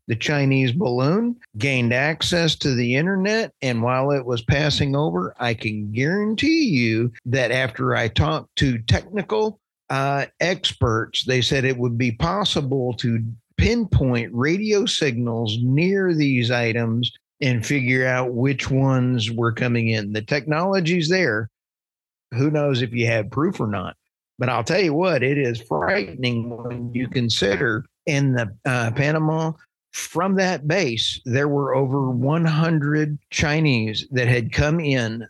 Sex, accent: male, American